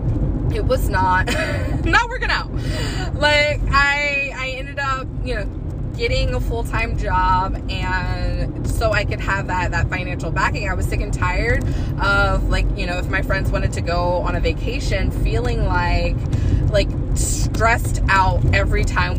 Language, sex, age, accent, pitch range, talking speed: English, female, 20-39, American, 95-120 Hz, 165 wpm